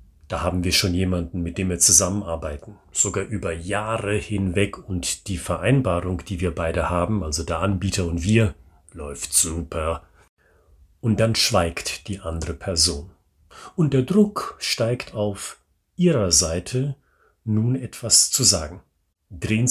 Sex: male